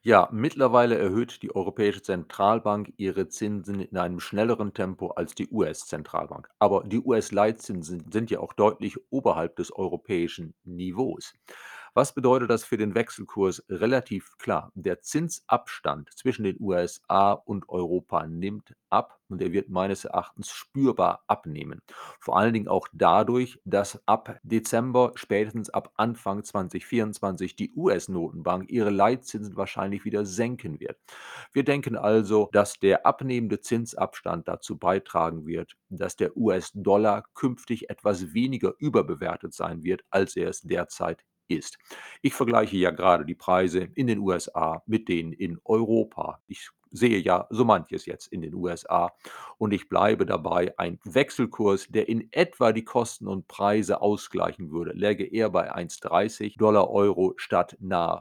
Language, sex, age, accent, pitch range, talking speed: German, male, 40-59, German, 95-115 Hz, 145 wpm